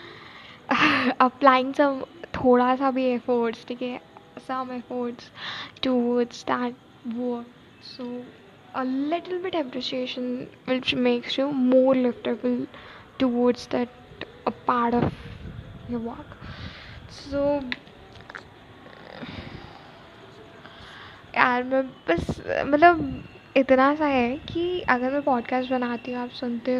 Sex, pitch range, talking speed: female, 250-285 Hz, 95 wpm